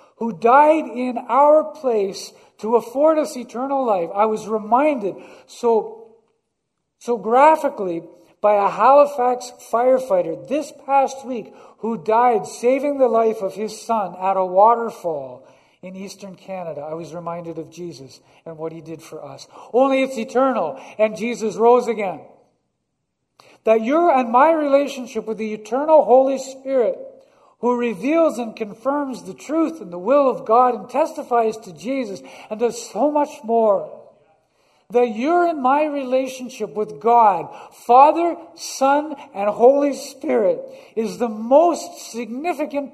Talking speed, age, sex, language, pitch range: 140 wpm, 50-69, male, English, 215-280 Hz